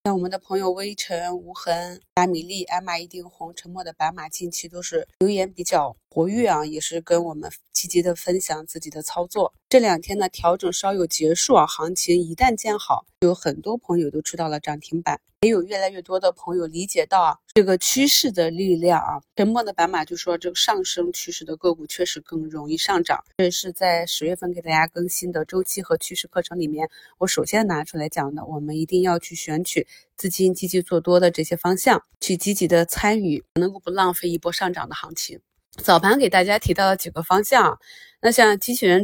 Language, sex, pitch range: Chinese, female, 165-190 Hz